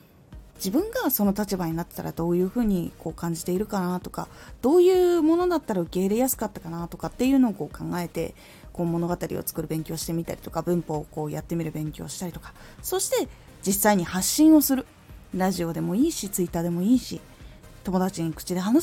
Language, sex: Japanese, female